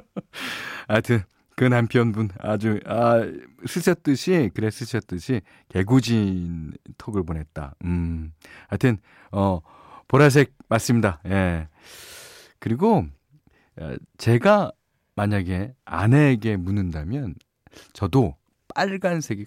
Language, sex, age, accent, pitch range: Korean, male, 40-59, native, 90-135 Hz